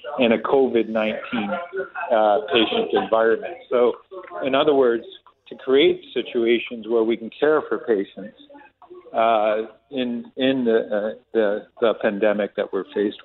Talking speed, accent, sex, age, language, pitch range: 135 wpm, American, male, 50-69, English, 110-135 Hz